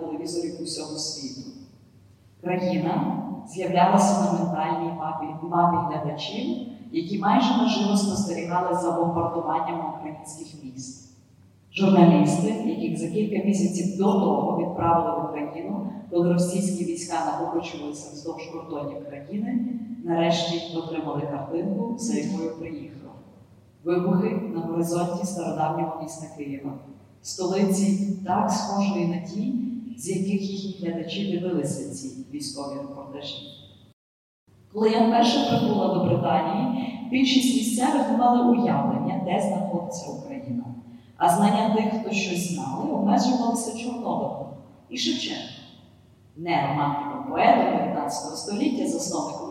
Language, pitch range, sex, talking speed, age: Ukrainian, 155-210 Hz, female, 110 wpm, 40-59